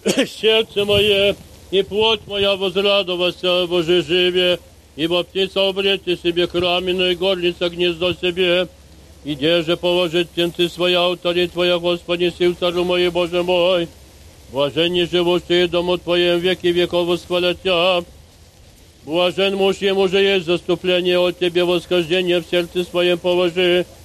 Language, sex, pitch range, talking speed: Polish, male, 175-190 Hz, 140 wpm